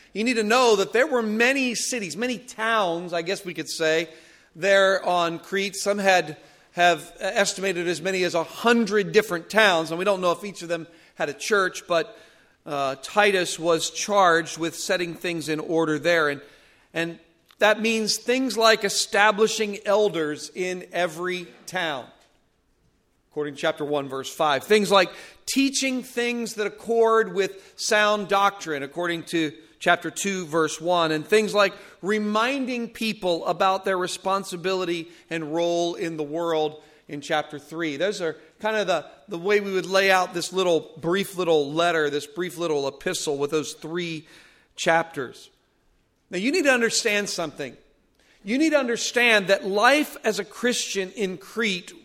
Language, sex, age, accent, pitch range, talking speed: English, male, 40-59, American, 165-215 Hz, 165 wpm